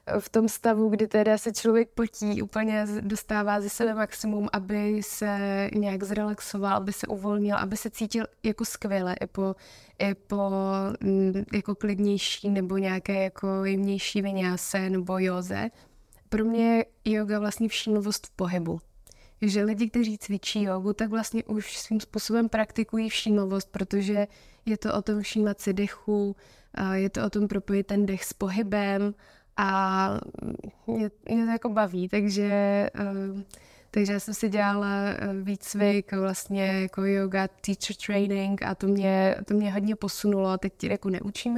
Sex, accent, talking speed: female, native, 145 wpm